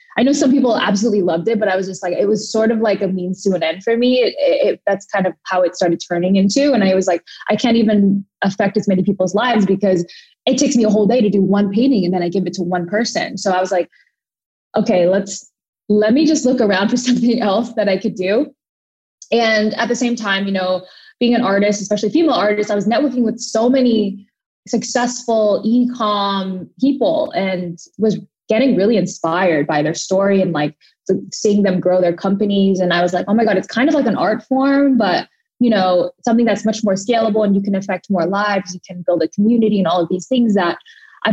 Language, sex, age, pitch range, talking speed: English, female, 20-39, 190-235 Hz, 235 wpm